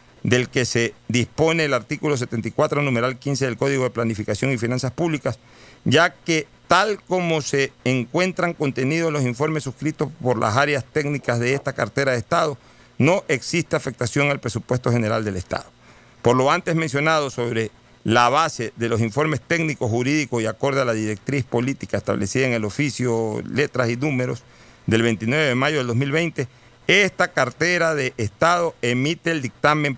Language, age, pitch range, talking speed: Spanish, 40-59, 115-145 Hz, 160 wpm